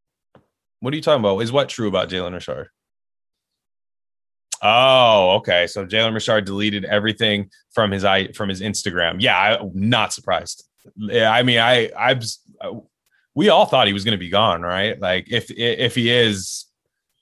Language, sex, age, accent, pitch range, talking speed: English, male, 20-39, American, 95-115 Hz, 165 wpm